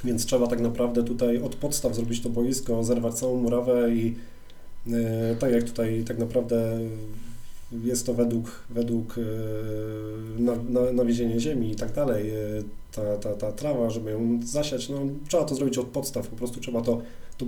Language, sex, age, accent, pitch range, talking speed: Polish, male, 20-39, native, 115-125 Hz, 160 wpm